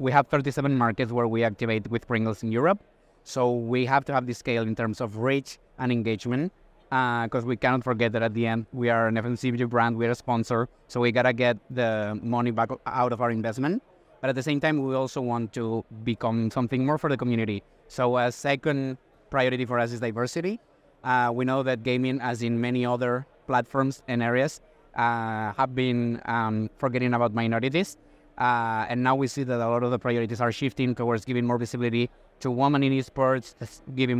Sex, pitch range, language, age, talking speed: male, 120-135 Hz, English, 20-39, 205 wpm